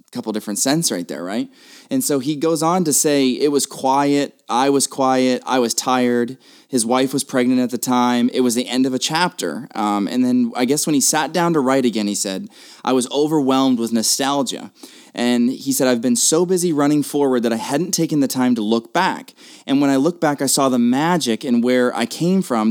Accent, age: American, 20-39